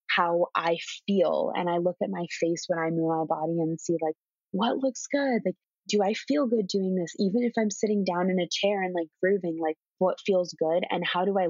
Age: 20-39